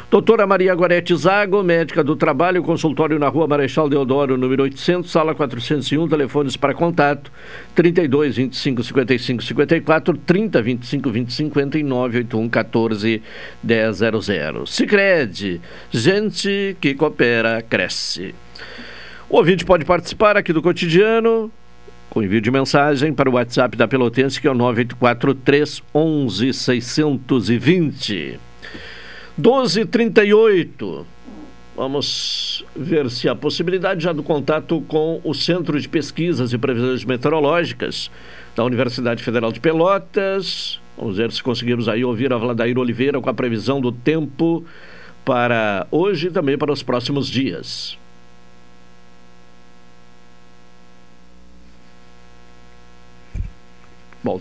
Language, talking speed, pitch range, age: Portuguese, 110 wpm, 115-160 Hz, 60-79